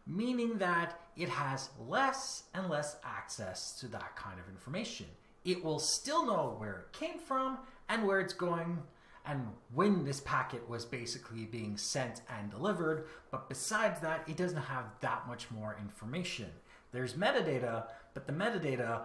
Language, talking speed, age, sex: English, 160 wpm, 30-49, male